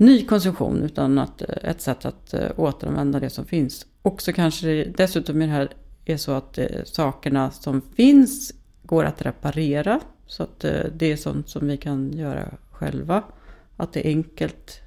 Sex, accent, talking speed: female, native, 165 wpm